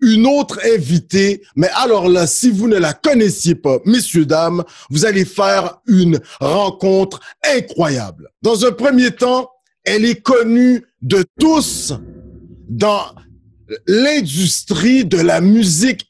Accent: French